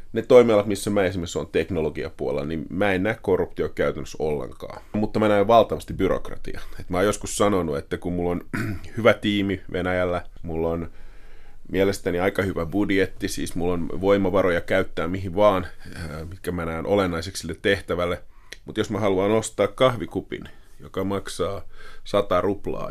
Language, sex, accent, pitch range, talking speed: Finnish, male, native, 90-105 Hz, 155 wpm